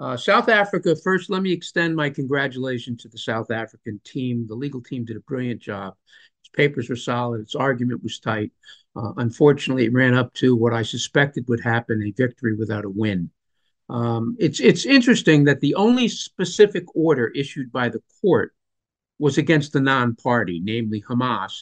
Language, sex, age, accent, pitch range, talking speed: English, male, 50-69, American, 120-170 Hz, 180 wpm